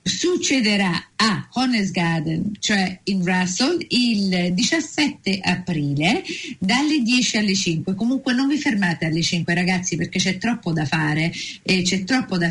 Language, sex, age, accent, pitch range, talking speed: Italian, female, 50-69, native, 180-235 Hz, 145 wpm